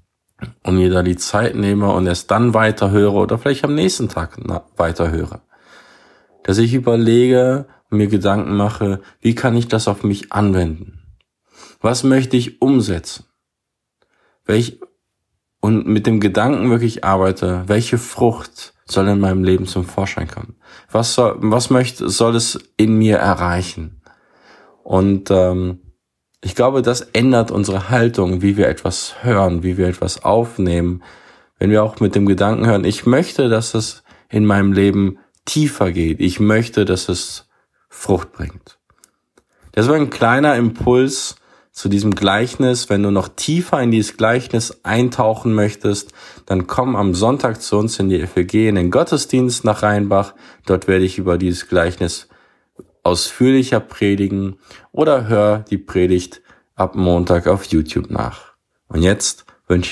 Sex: male